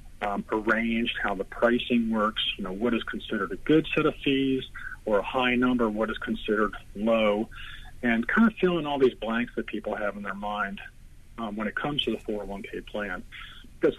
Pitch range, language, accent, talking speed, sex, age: 105-125 Hz, English, American, 200 wpm, male, 40-59